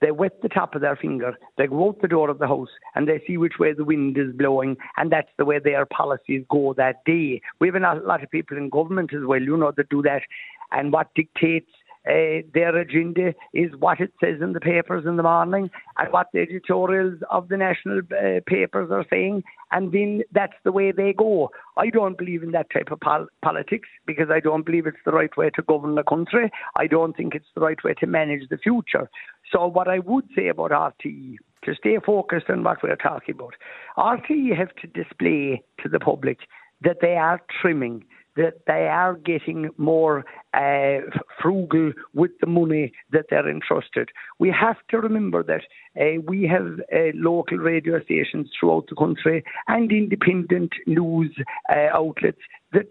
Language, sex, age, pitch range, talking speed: English, male, 60-79, 150-190 Hz, 195 wpm